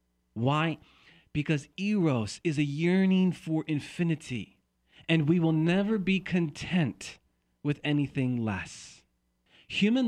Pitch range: 110-155 Hz